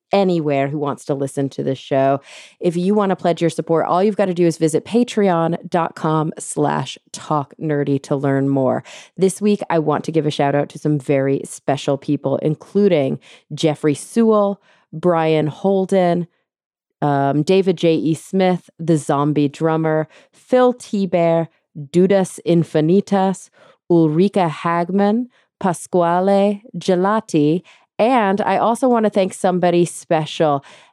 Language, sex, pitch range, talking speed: English, female, 150-195 Hz, 135 wpm